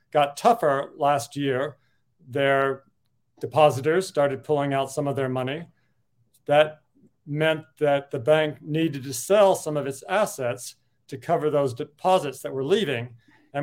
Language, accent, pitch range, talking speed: English, American, 135-160 Hz, 145 wpm